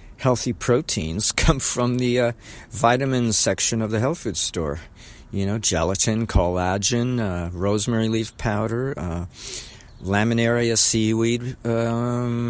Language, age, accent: English, 50-69, American